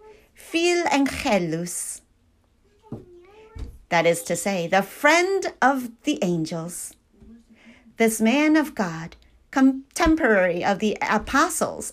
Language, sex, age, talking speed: English, female, 40-59, 95 wpm